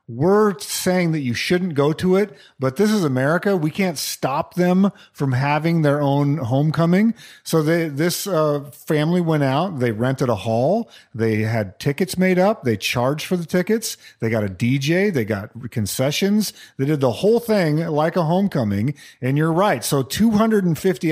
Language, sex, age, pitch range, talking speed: English, male, 40-59, 125-170 Hz, 175 wpm